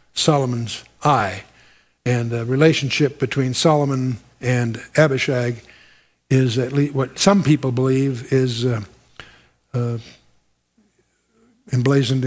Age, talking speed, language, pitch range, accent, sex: 60-79, 100 wpm, English, 125-150 Hz, American, male